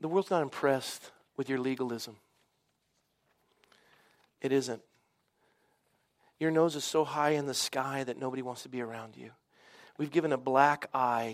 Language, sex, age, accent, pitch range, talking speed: English, male, 40-59, American, 120-145 Hz, 155 wpm